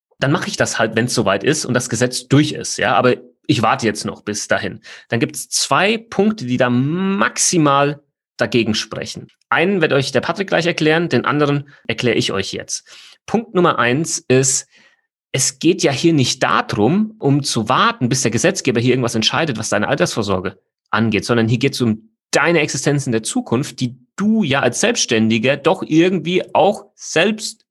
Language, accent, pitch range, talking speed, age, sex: German, German, 110-155 Hz, 190 wpm, 30-49, male